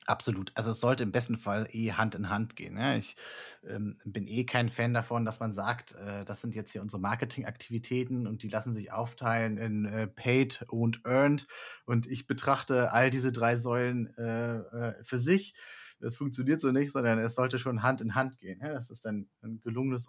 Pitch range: 110-125 Hz